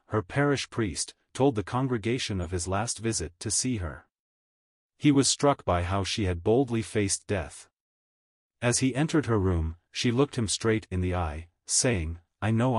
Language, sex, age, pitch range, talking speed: English, male, 40-59, 90-120 Hz, 180 wpm